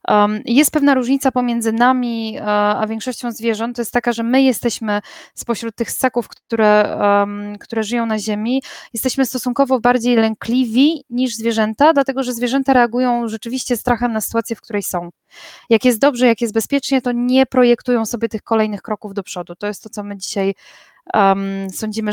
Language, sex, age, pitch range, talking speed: Polish, female, 20-39, 225-265 Hz, 165 wpm